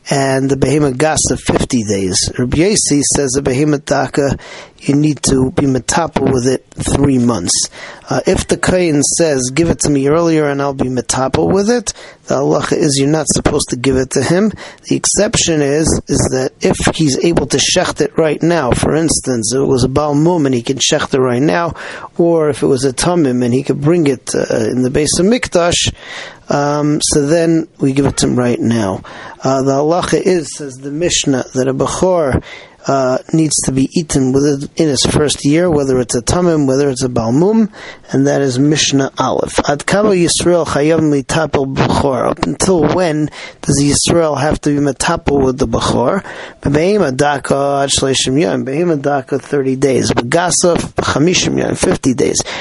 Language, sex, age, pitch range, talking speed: English, male, 40-59, 135-160 Hz, 180 wpm